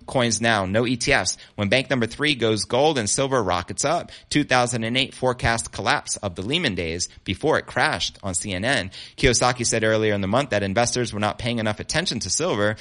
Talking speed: 190 wpm